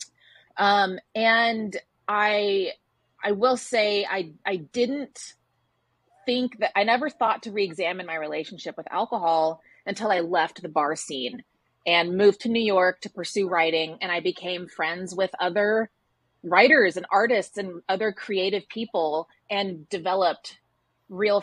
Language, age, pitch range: English, 30-49, 175-235 Hz